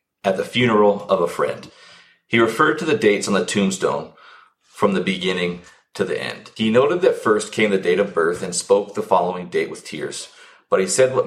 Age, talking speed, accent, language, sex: 40-59, 215 wpm, American, English, male